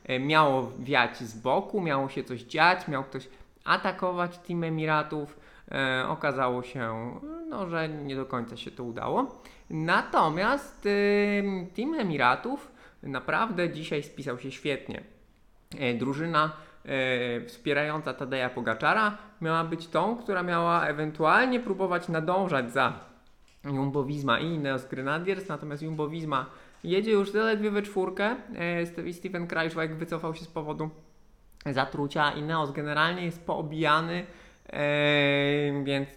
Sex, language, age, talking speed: male, Polish, 20-39, 120 wpm